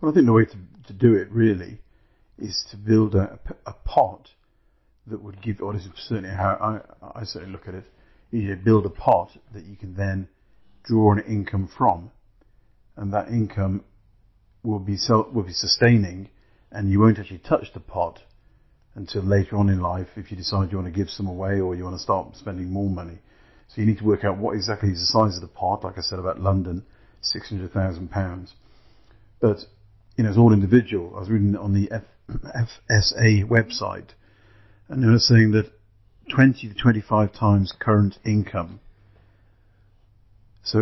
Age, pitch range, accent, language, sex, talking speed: 50-69, 95-110 Hz, British, English, male, 185 wpm